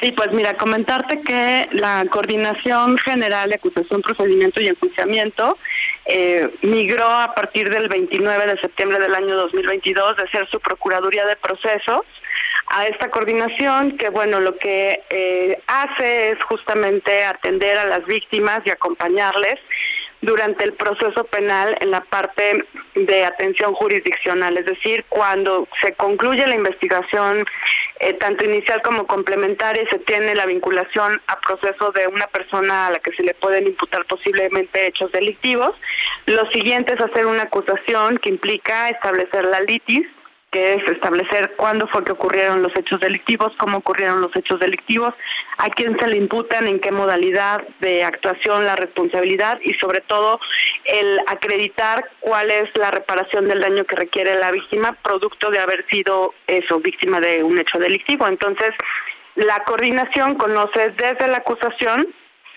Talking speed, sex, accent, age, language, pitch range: 150 wpm, female, Mexican, 30-49, Spanish, 190-225 Hz